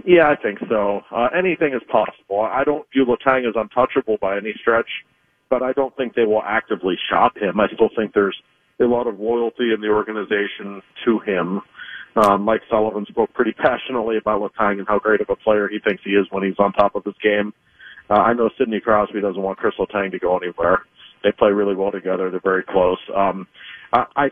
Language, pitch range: English, 105-115 Hz